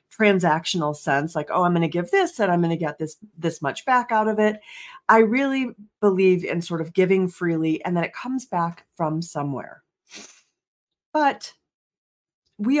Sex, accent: female, American